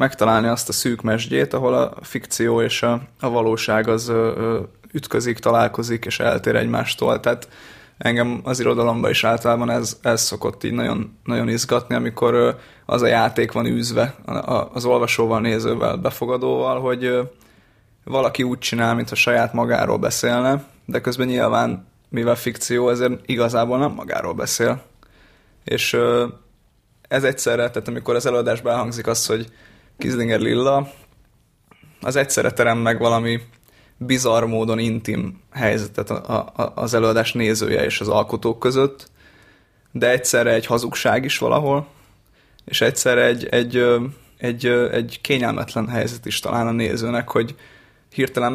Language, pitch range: Hungarian, 115-125 Hz